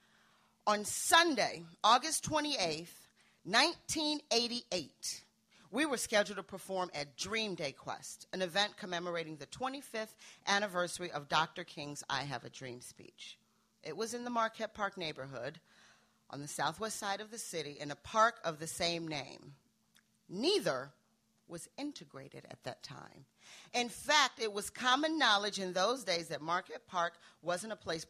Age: 40-59